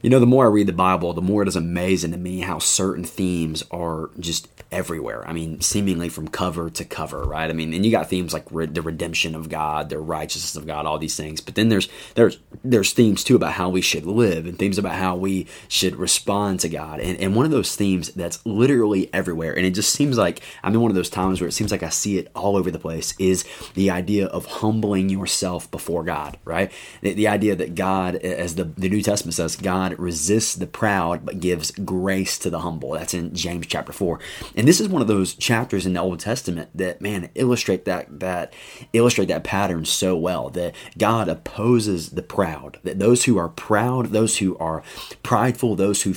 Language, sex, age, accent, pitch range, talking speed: English, male, 30-49, American, 85-105 Hz, 225 wpm